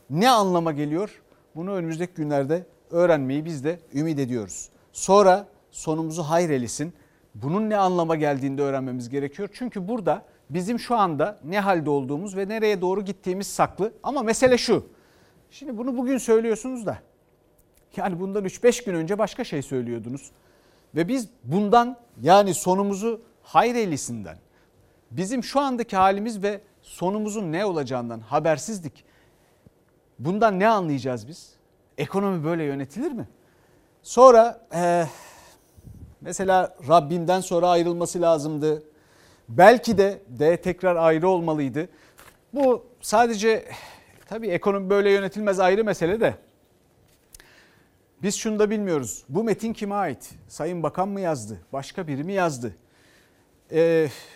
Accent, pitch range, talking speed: native, 150-205 Hz, 125 wpm